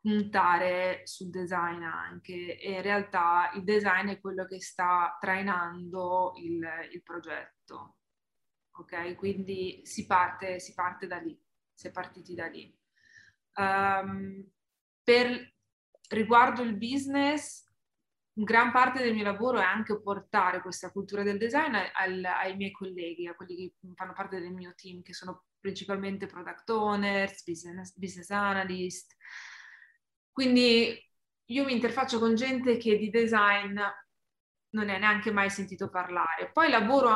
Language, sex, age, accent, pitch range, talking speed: Italian, female, 20-39, native, 185-225 Hz, 135 wpm